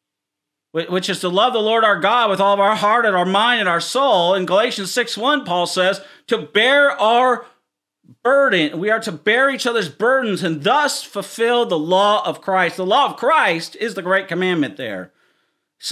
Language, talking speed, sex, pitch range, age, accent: English, 195 wpm, male, 180-240 Hz, 40-59, American